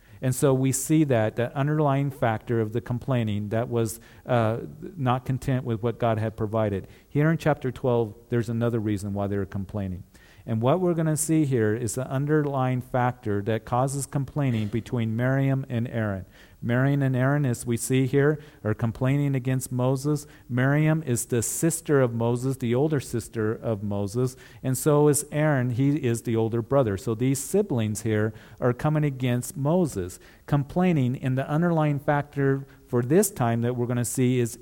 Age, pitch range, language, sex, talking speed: 50-69, 115-145 Hz, English, male, 180 wpm